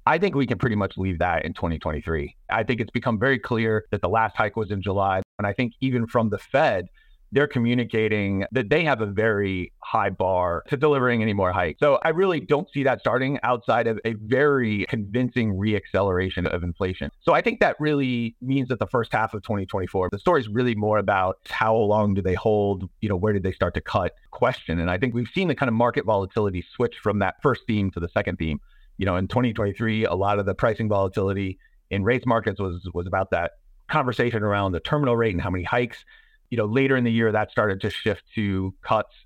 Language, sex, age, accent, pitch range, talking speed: English, male, 30-49, American, 95-125 Hz, 225 wpm